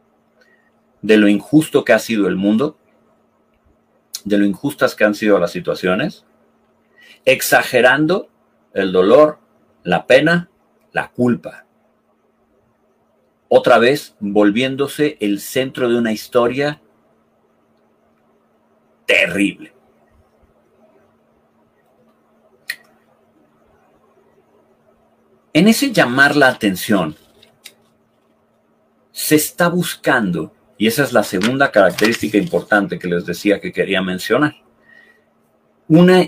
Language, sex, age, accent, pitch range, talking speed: Spanish, male, 50-69, Mexican, 105-155 Hz, 90 wpm